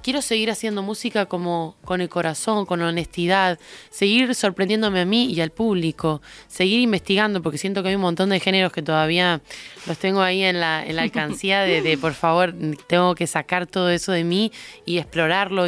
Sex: female